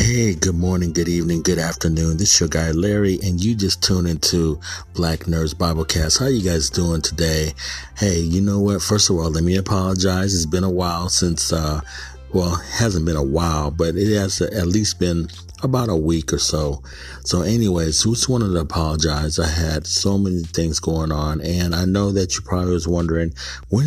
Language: English